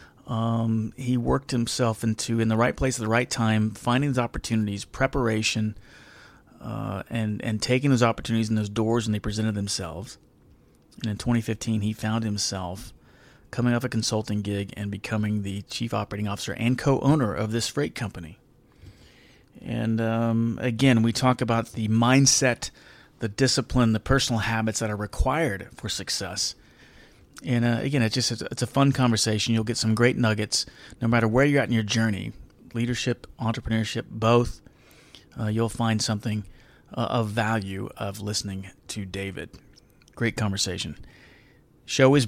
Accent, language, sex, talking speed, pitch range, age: American, English, male, 160 wpm, 105-125 Hz, 30-49